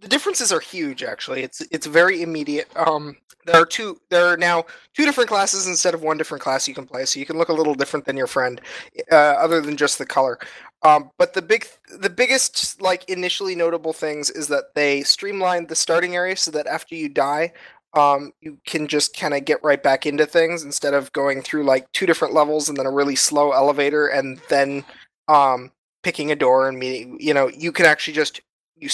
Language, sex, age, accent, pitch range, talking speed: English, male, 20-39, American, 140-170 Hz, 220 wpm